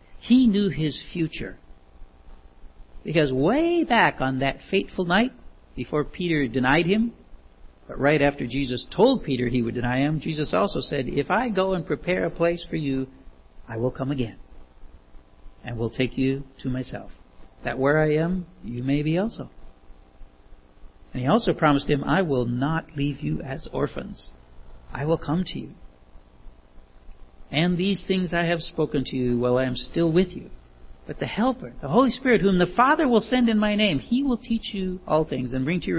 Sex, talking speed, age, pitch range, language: male, 185 wpm, 60-79, 110-175 Hz, English